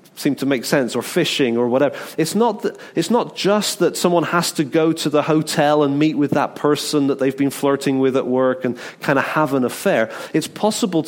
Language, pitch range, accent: English, 140-175 Hz, British